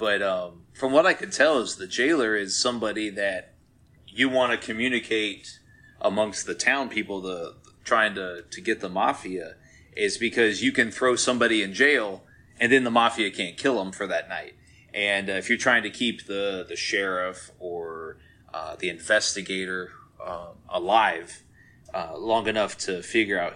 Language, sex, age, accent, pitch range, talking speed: English, male, 30-49, American, 95-125 Hz, 175 wpm